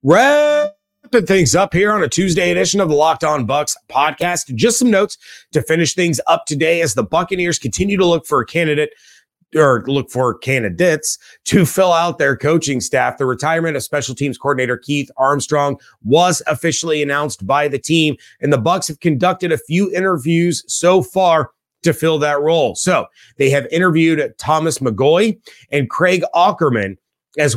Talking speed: 170 wpm